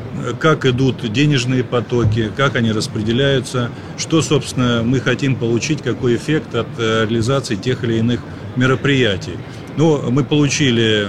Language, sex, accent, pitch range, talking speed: Russian, male, native, 115-135 Hz, 125 wpm